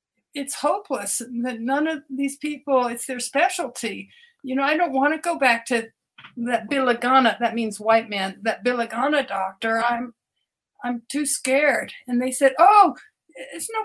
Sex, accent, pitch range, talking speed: female, American, 235-300 Hz, 165 wpm